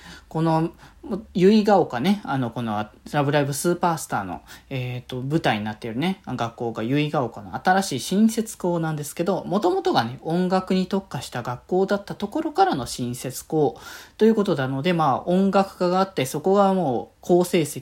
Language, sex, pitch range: Japanese, male, 135-190 Hz